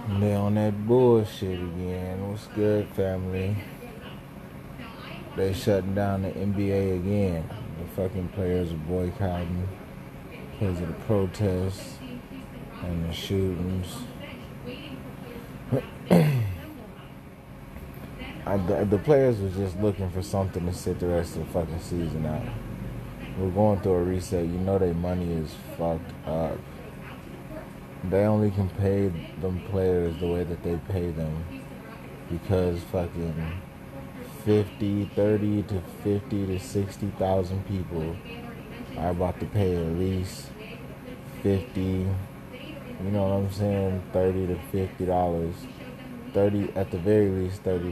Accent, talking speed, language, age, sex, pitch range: American, 125 wpm, English, 30-49, male, 85-100 Hz